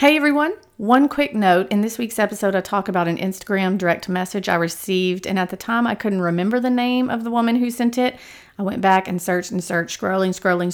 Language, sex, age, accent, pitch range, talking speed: English, female, 40-59, American, 180-225 Hz, 235 wpm